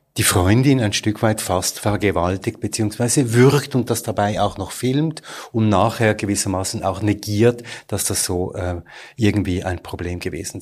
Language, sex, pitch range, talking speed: German, male, 100-130 Hz, 160 wpm